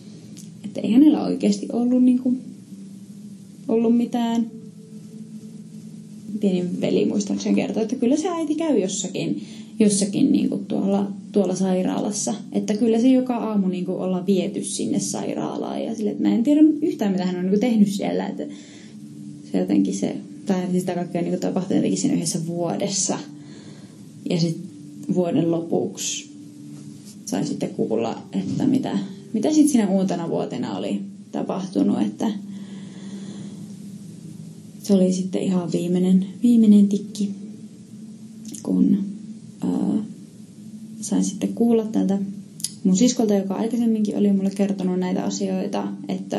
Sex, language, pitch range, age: female, Finnish, 180-215 Hz, 20-39